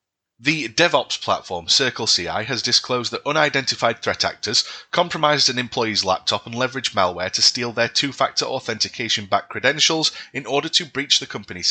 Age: 30-49